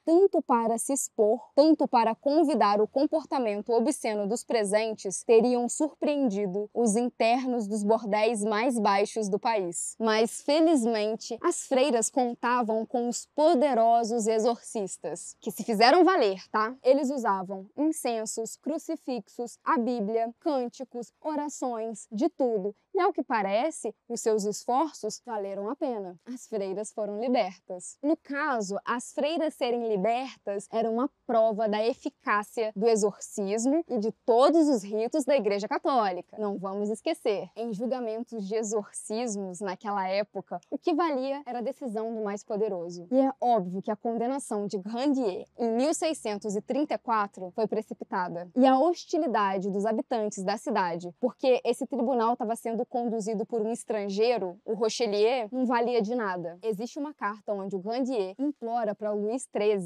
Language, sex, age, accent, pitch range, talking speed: Portuguese, female, 10-29, Brazilian, 210-260 Hz, 145 wpm